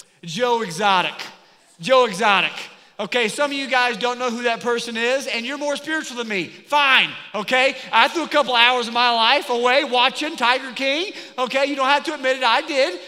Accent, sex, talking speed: American, male, 205 wpm